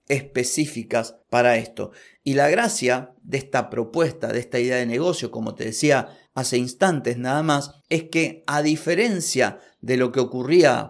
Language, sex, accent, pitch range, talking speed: Spanish, male, Argentinian, 120-150 Hz, 160 wpm